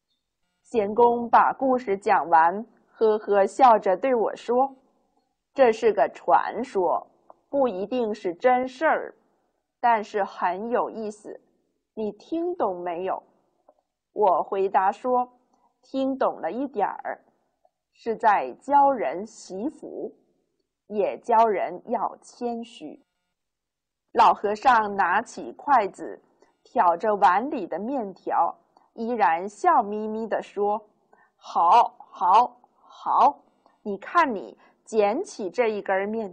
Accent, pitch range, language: native, 200-260 Hz, Chinese